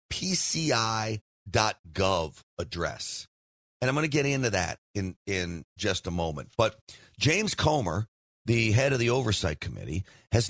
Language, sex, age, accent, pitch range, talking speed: English, male, 50-69, American, 95-135 Hz, 135 wpm